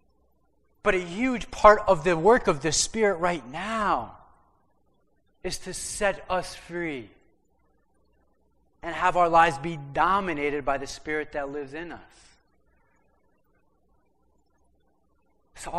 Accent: American